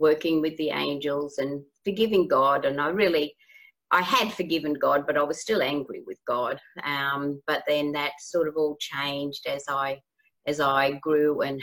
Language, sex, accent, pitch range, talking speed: English, female, Australian, 150-185 Hz, 180 wpm